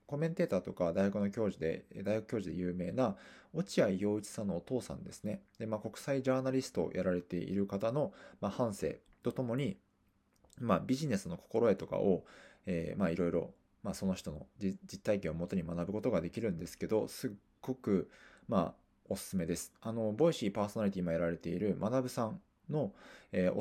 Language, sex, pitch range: Japanese, male, 85-110 Hz